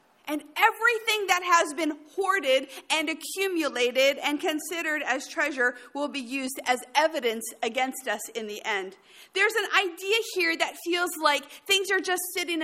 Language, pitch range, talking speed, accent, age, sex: English, 250-345 Hz, 155 wpm, American, 40-59, female